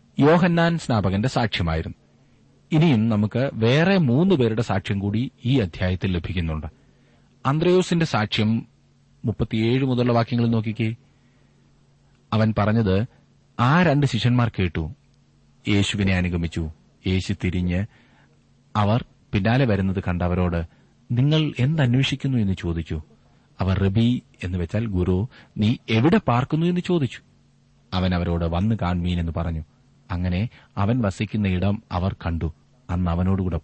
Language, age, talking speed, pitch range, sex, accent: Malayalam, 30-49, 105 wpm, 90-125 Hz, male, native